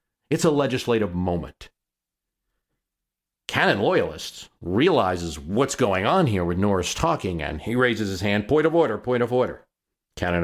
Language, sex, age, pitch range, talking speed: English, male, 50-69, 90-120 Hz, 150 wpm